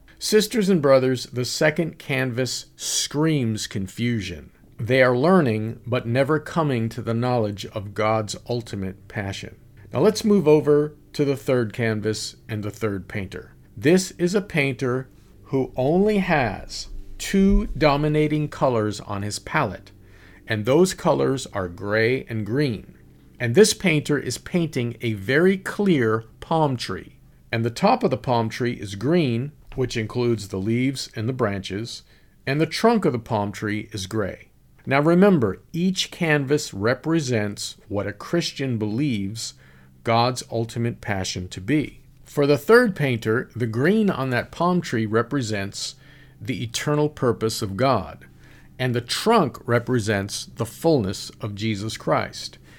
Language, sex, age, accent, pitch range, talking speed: English, male, 50-69, American, 110-150 Hz, 145 wpm